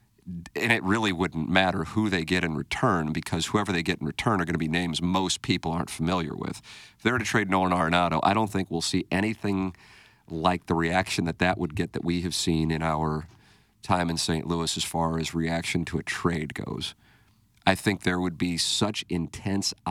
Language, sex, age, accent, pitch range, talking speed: English, male, 50-69, American, 80-105 Hz, 215 wpm